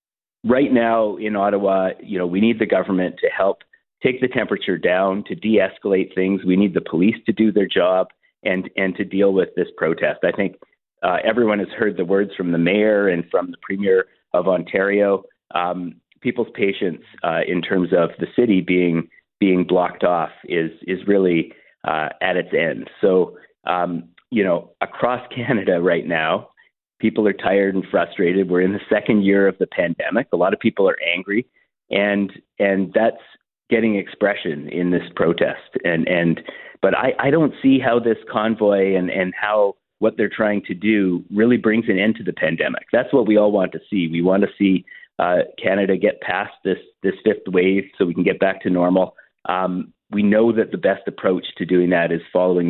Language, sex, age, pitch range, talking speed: English, male, 40-59, 90-105 Hz, 190 wpm